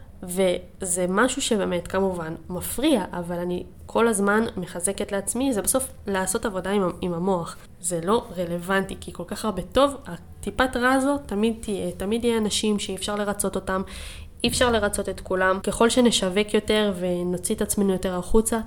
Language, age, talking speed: Hebrew, 20-39, 165 wpm